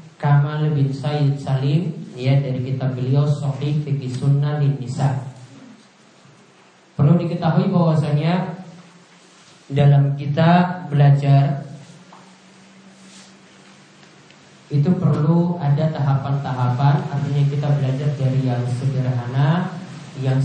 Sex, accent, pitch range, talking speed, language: male, Indonesian, 140-175 Hz, 80 wpm, English